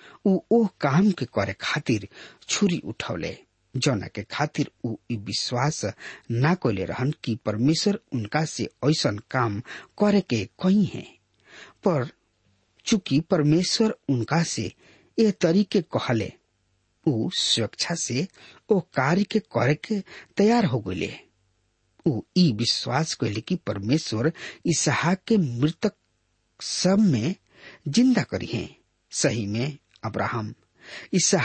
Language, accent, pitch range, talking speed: English, Indian, 110-175 Hz, 110 wpm